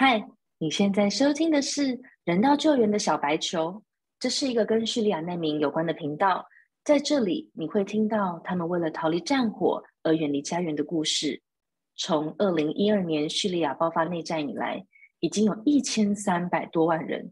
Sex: female